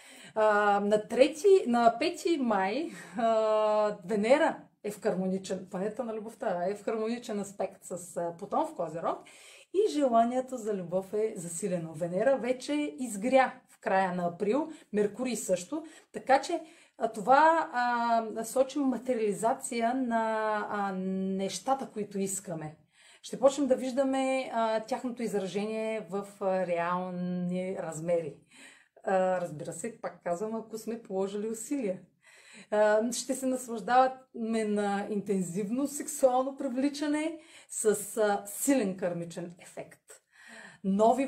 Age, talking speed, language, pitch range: 30-49, 110 wpm, Bulgarian, 190-260 Hz